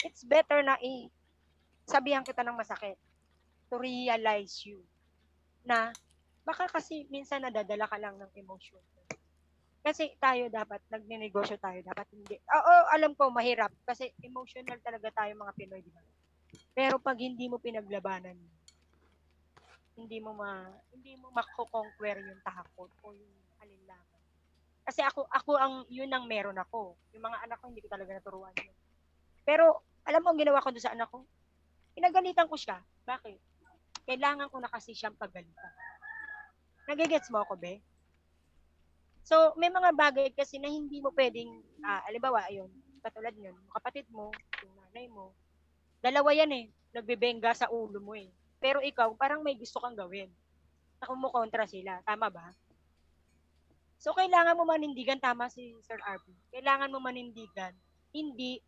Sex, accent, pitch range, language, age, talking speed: female, native, 190-265 Hz, Filipino, 20-39, 150 wpm